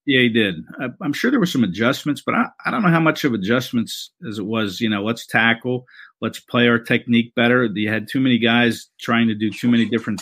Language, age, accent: English, 50-69, American